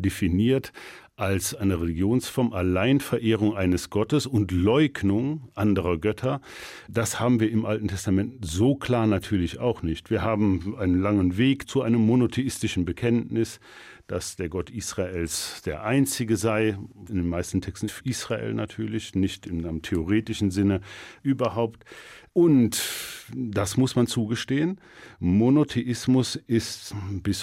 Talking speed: 125 wpm